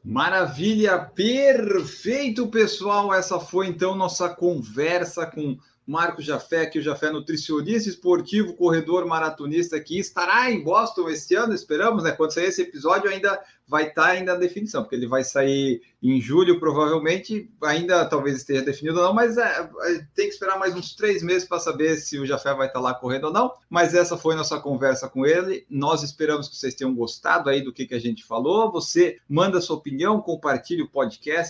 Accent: Brazilian